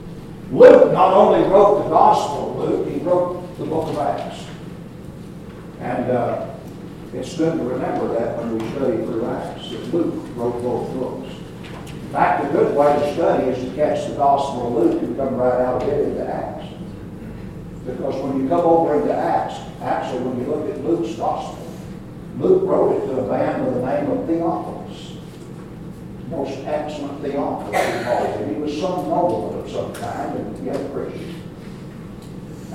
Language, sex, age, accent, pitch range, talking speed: English, male, 60-79, American, 130-170 Hz, 175 wpm